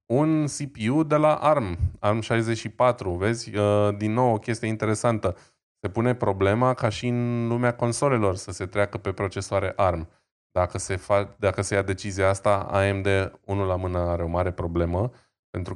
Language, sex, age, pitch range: Romanian, male, 20-39, 95-115 Hz